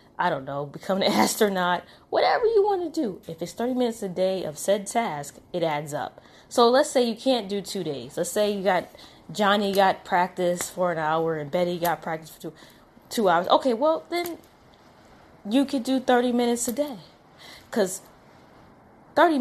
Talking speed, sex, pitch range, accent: 190 wpm, female, 185-235 Hz, American